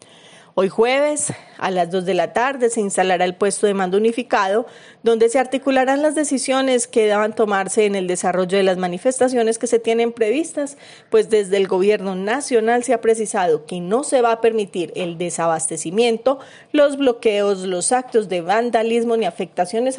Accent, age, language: Colombian, 30-49, Spanish